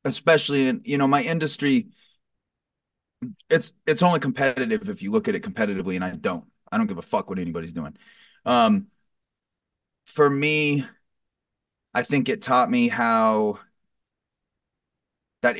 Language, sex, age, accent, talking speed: English, male, 30-49, American, 140 wpm